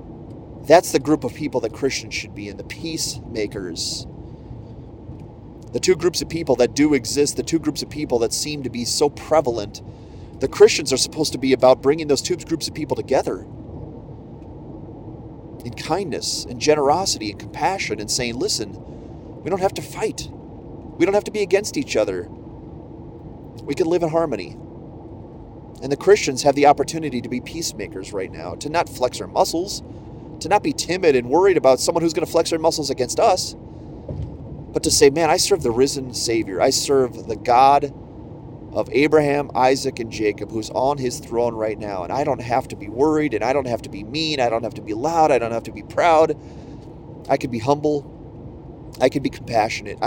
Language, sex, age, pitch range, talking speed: English, male, 30-49, 115-155 Hz, 195 wpm